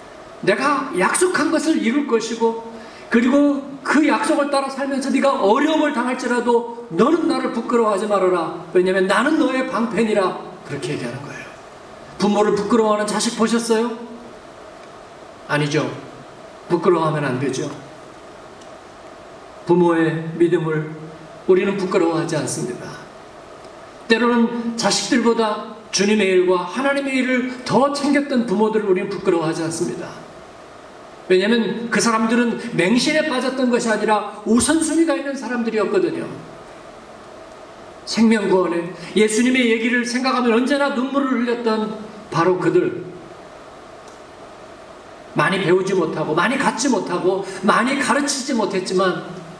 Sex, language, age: male, Korean, 40-59